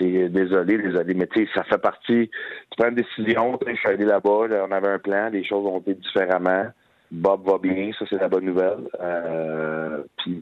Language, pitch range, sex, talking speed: French, 85-100 Hz, male, 195 wpm